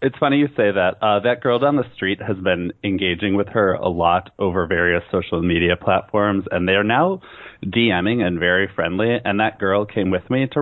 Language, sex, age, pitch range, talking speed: English, male, 30-49, 90-120 Hz, 215 wpm